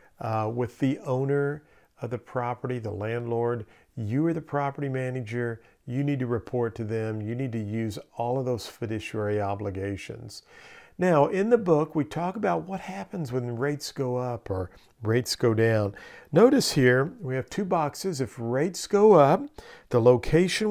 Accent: American